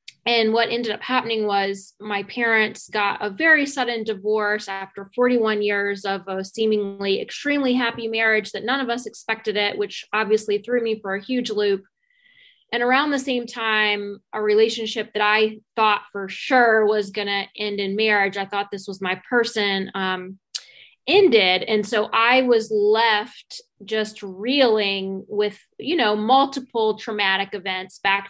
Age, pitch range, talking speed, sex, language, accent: 20-39, 205-245 Hz, 160 wpm, female, English, American